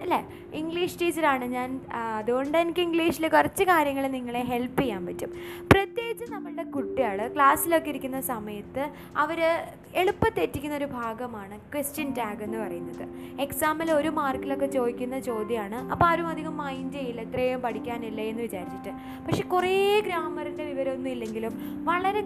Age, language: 20-39, Malayalam